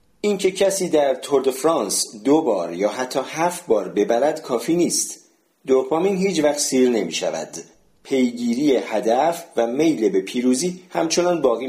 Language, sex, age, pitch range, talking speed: Persian, male, 40-59, 120-160 Hz, 150 wpm